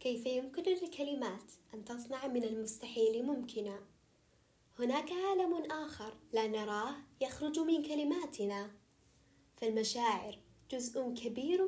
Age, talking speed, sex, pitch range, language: 10-29, 100 wpm, female, 220-280 Hz, Arabic